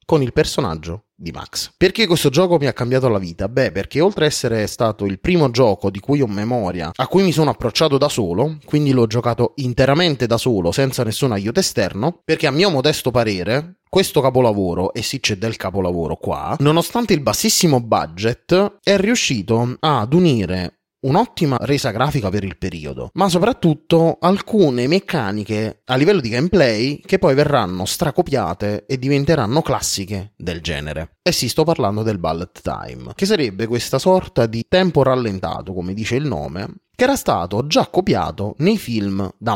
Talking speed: 170 wpm